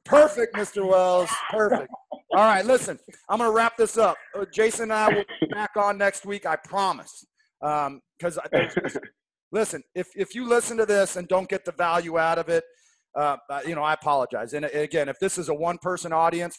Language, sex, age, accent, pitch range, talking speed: English, male, 30-49, American, 160-200 Hz, 205 wpm